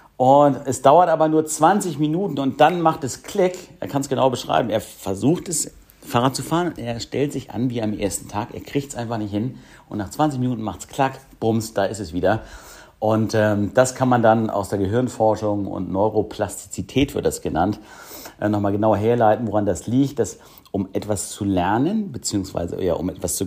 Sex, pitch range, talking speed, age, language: male, 100-130 Hz, 205 wpm, 50-69, German